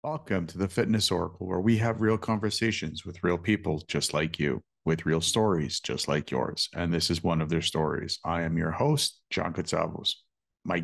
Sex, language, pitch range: male, English, 85-110 Hz